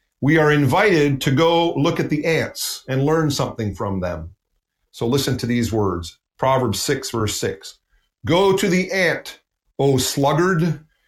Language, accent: English, American